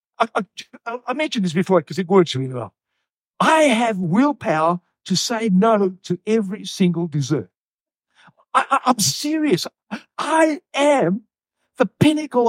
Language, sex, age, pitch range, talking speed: English, male, 60-79, 150-220 Hz, 140 wpm